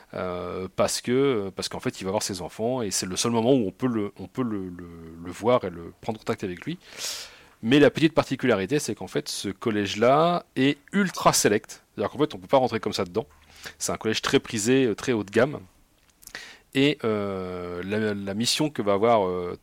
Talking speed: 230 wpm